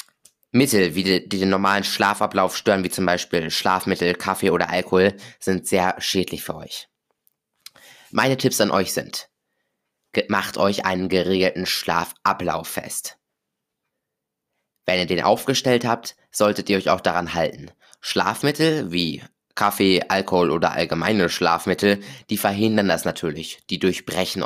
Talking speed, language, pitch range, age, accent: 130 wpm, German, 90-110 Hz, 20-39, German